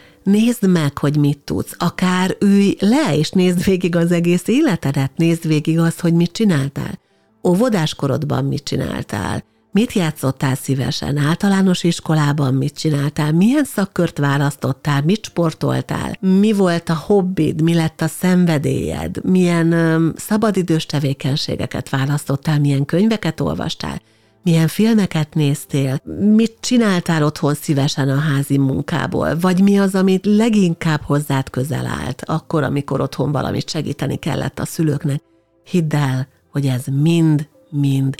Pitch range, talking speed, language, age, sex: 140-185 Hz, 130 wpm, Hungarian, 60-79, female